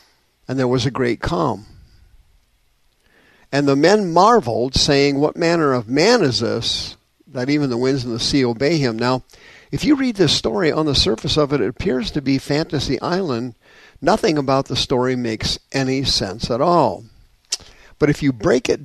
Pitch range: 120-150 Hz